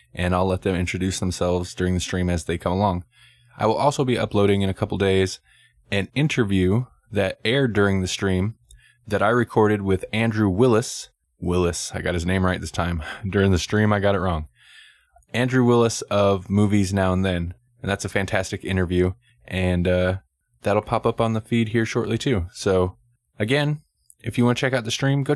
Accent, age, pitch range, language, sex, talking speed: American, 20-39, 95-115 Hz, English, male, 200 wpm